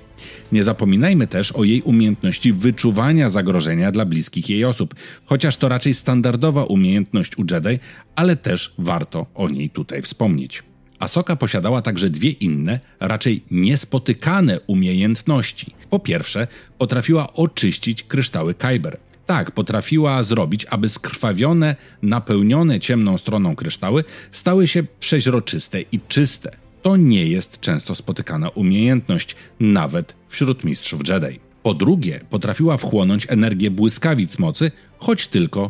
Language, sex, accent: Polish, male, native